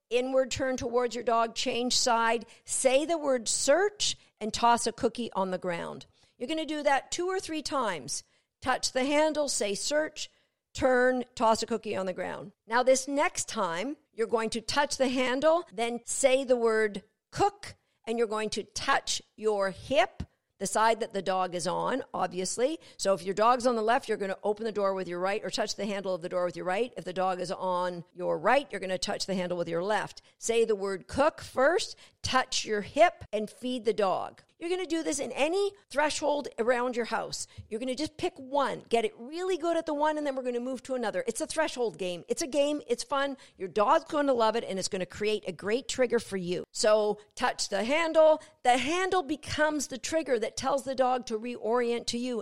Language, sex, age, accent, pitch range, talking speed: English, female, 50-69, American, 205-280 Hz, 225 wpm